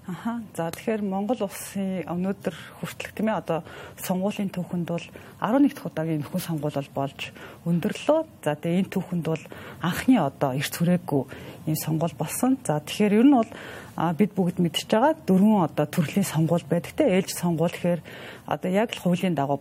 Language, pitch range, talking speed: English, 155-200 Hz, 155 wpm